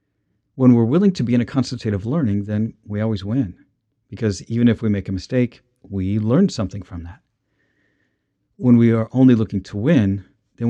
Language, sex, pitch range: English, male, 100-120 Hz